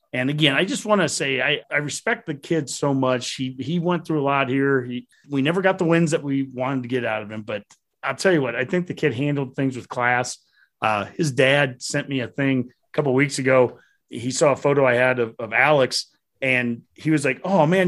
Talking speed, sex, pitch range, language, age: 250 wpm, male, 125-150 Hz, English, 30-49